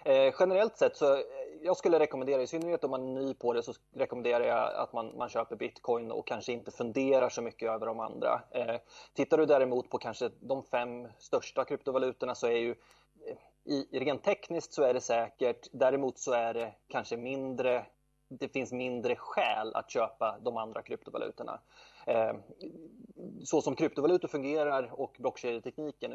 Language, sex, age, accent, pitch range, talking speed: English, male, 20-39, Swedish, 115-145 Hz, 170 wpm